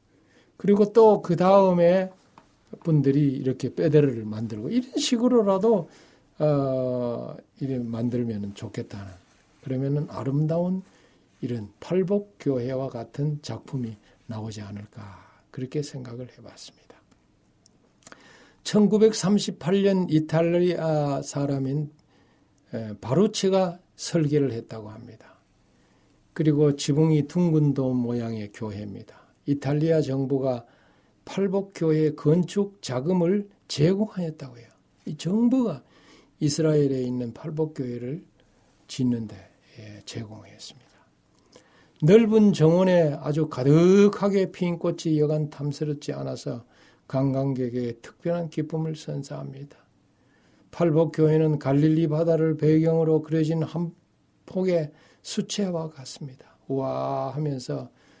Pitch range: 125-170 Hz